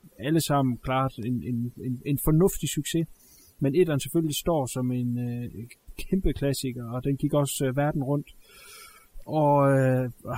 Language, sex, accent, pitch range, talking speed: Danish, male, native, 120-155 Hz, 160 wpm